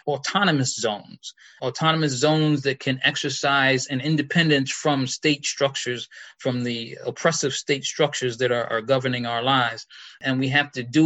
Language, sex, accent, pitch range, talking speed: English, male, American, 130-150 Hz, 150 wpm